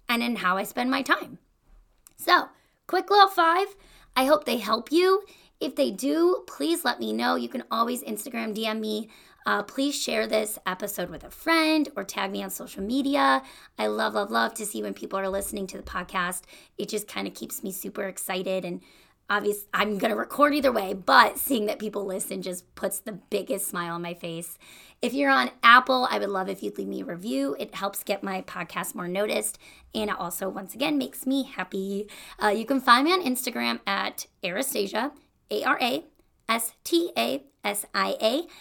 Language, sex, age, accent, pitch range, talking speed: English, female, 20-39, American, 195-275 Hz, 190 wpm